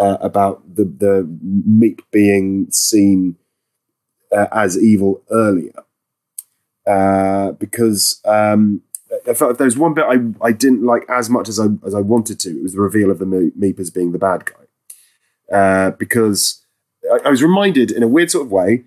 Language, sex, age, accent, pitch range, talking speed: English, male, 30-49, British, 105-130 Hz, 170 wpm